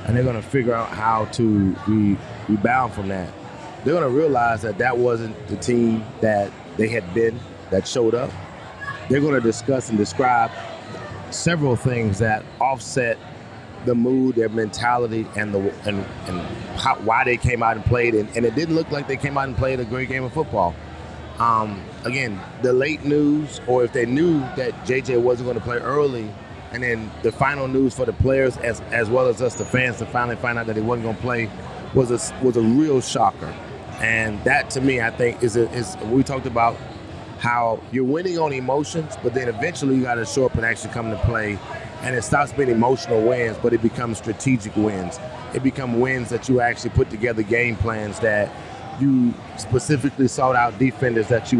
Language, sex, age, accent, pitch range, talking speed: English, male, 30-49, American, 110-130 Hz, 200 wpm